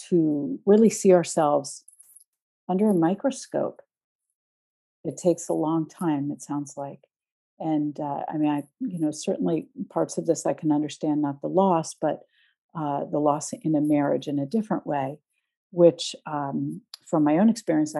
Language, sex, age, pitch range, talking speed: English, female, 50-69, 150-185 Hz, 165 wpm